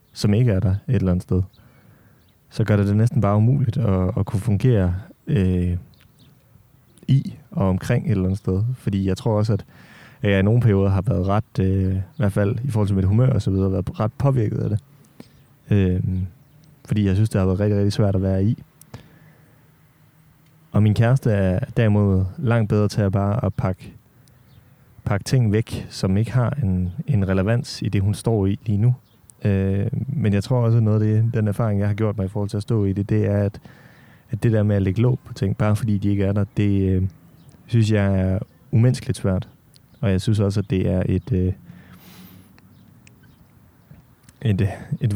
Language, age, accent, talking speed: Danish, 30-49, native, 195 wpm